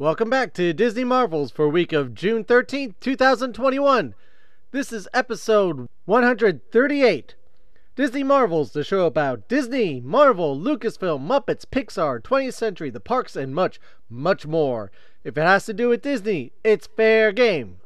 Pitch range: 145-235 Hz